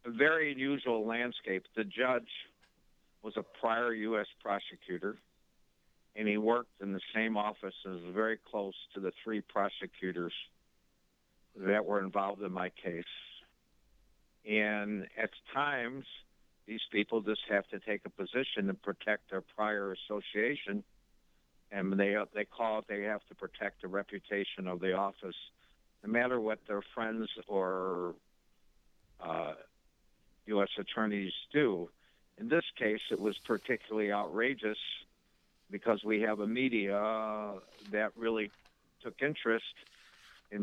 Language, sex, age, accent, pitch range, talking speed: English, male, 60-79, American, 100-115 Hz, 130 wpm